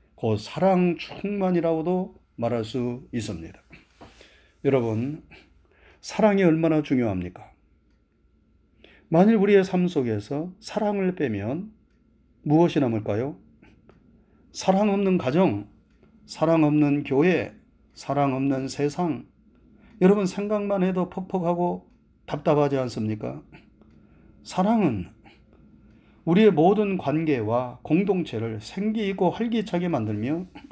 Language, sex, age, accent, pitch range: Korean, male, 30-49, native, 135-185 Hz